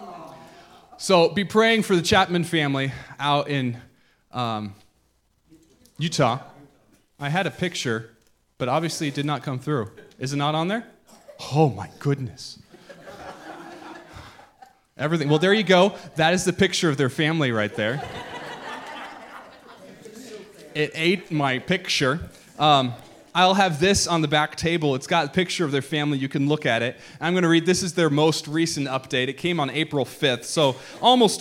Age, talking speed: 20-39, 160 wpm